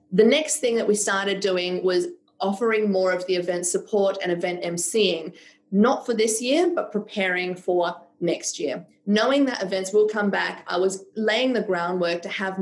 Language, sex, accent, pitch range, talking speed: English, female, Australian, 180-220 Hz, 185 wpm